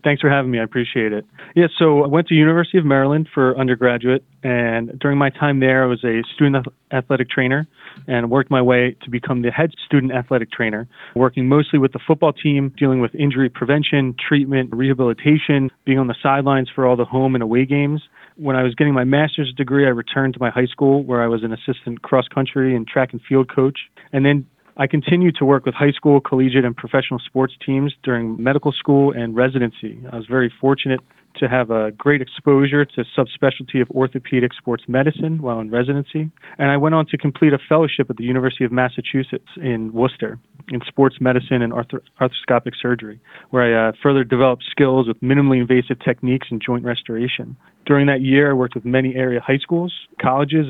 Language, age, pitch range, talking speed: English, 30-49, 125-140 Hz, 200 wpm